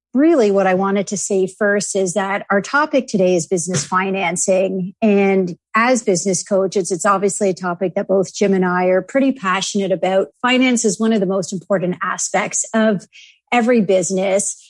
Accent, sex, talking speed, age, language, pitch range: American, female, 175 wpm, 50-69, English, 185-220 Hz